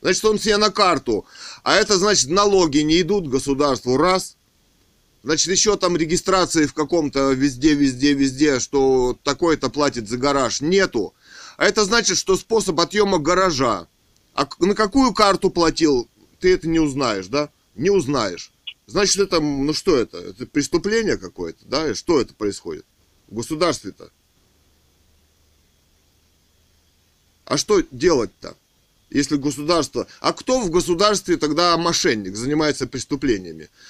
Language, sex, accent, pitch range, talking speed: Russian, male, native, 125-185 Hz, 135 wpm